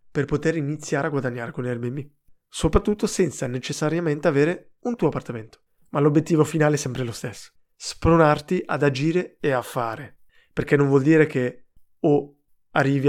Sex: male